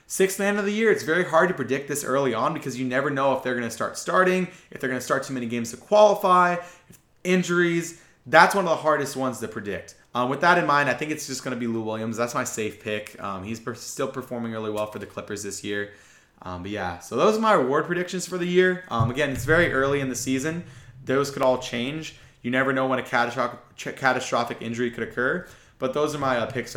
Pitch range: 120-155 Hz